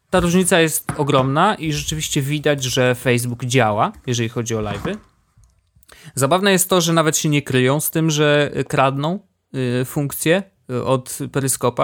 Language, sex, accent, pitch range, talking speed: Polish, male, native, 120-155 Hz, 150 wpm